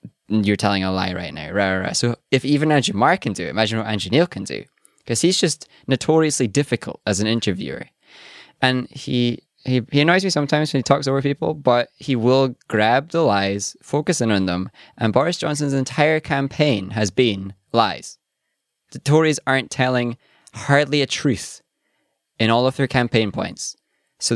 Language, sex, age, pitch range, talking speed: English, male, 20-39, 105-130 Hz, 170 wpm